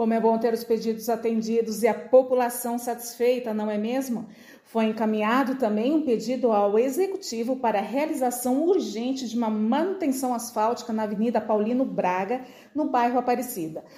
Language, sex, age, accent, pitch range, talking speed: Portuguese, female, 40-59, Brazilian, 215-260 Hz, 155 wpm